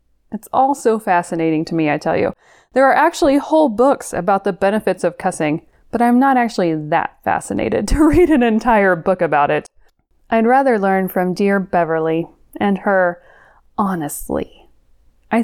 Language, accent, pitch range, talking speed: English, American, 175-250 Hz, 165 wpm